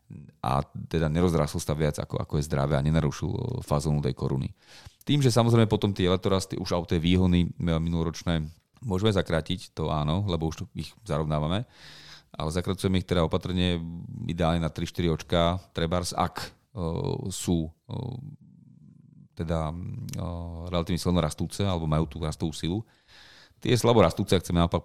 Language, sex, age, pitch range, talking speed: Slovak, male, 40-59, 80-110 Hz, 145 wpm